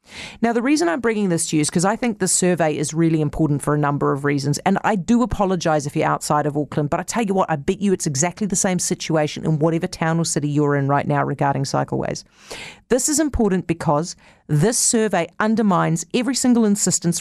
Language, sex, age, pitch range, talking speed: English, female, 40-59, 150-205 Hz, 225 wpm